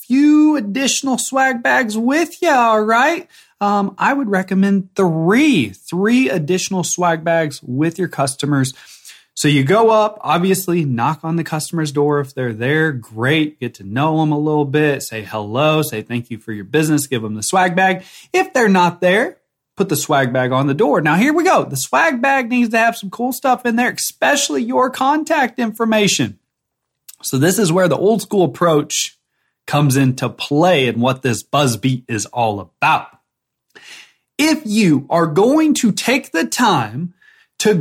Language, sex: English, male